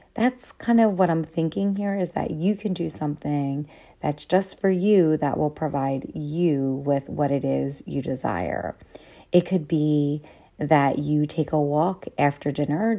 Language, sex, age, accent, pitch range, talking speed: English, female, 30-49, American, 150-185 Hz, 170 wpm